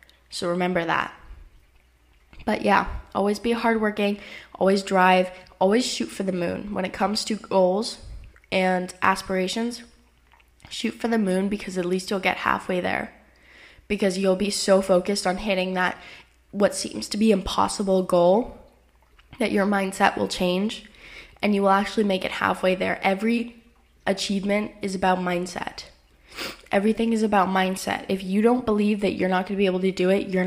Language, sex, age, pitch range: English, female, 10-29, 180-205 Hz